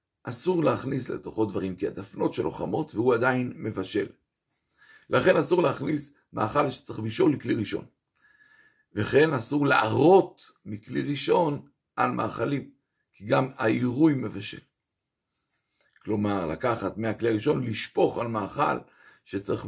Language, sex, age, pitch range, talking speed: Hebrew, male, 60-79, 110-165 Hz, 115 wpm